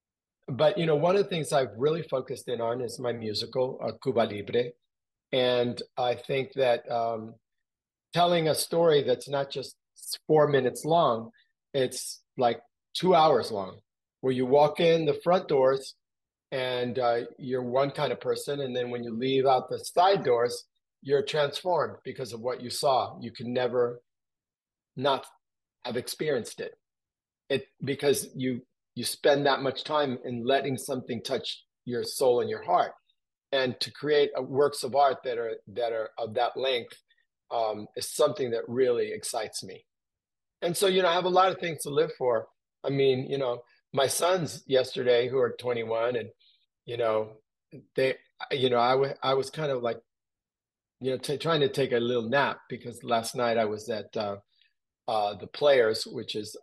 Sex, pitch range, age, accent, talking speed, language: male, 120-165 Hz, 40-59, American, 175 wpm, English